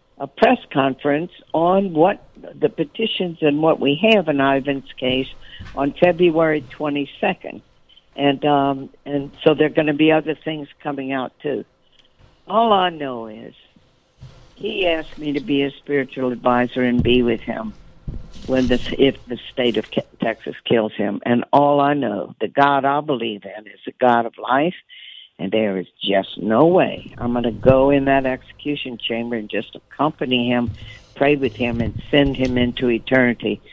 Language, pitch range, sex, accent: English, 120-155 Hz, female, American